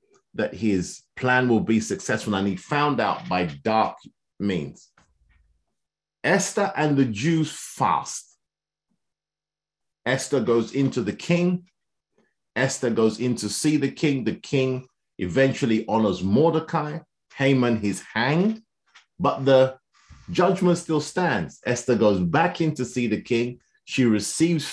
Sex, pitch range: male, 110-155 Hz